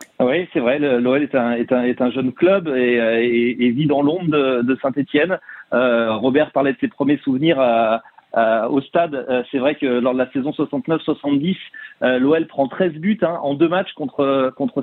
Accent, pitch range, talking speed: French, 130-175 Hz, 180 wpm